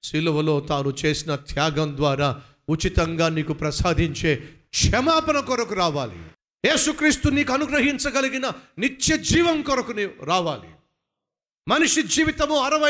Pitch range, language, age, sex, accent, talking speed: 150-250 Hz, Telugu, 50-69, male, native, 75 wpm